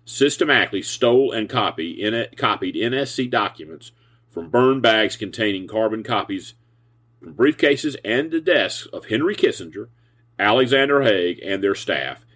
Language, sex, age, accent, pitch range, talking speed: English, male, 40-59, American, 115-140 Hz, 120 wpm